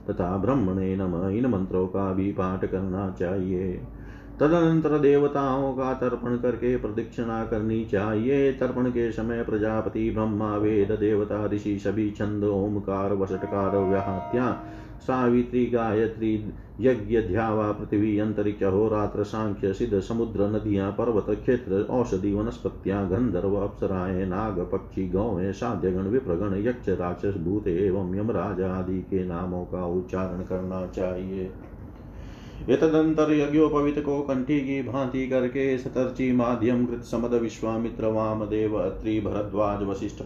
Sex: male